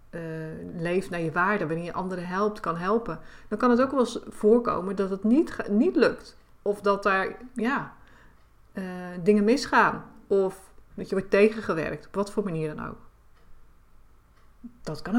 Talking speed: 170 wpm